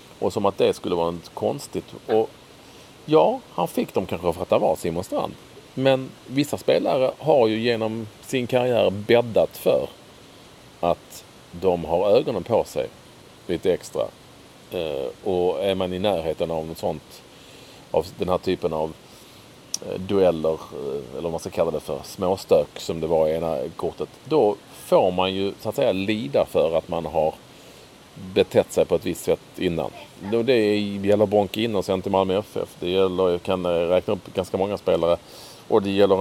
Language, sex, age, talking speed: English, male, 40-59, 180 wpm